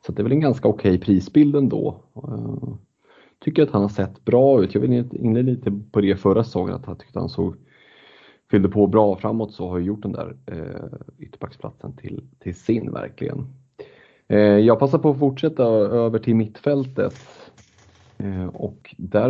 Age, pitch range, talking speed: 30-49, 90-115 Hz, 175 wpm